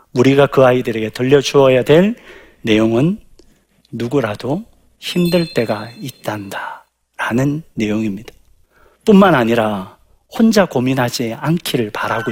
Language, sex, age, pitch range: Korean, male, 40-59, 115-185 Hz